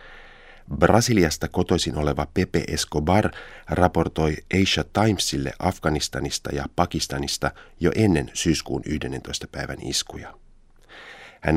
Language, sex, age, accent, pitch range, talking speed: Finnish, male, 30-49, native, 70-85 Hz, 95 wpm